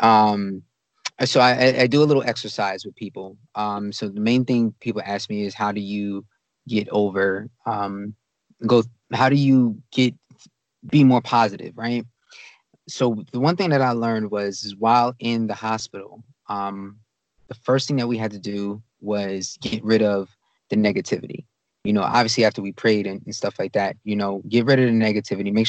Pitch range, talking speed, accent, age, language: 105-120 Hz, 185 wpm, American, 20-39, English